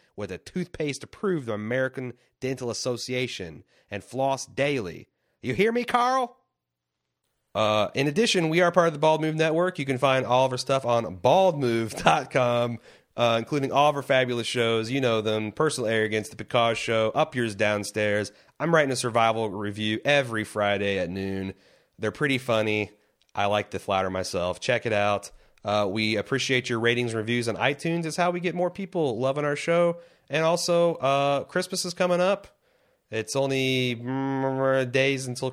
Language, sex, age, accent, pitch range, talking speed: English, male, 30-49, American, 105-140 Hz, 170 wpm